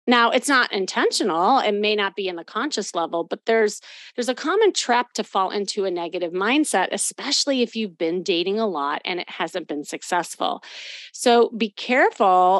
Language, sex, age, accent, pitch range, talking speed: English, female, 30-49, American, 190-250 Hz, 185 wpm